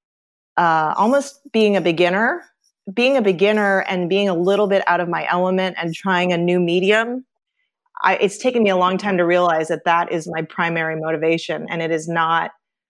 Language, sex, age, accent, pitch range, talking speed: English, female, 30-49, American, 165-200 Hz, 185 wpm